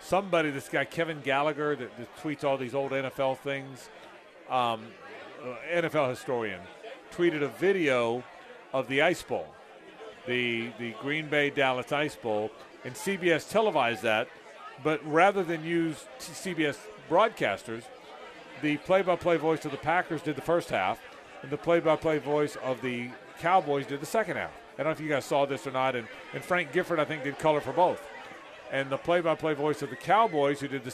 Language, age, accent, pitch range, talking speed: English, 40-59, American, 135-165 Hz, 175 wpm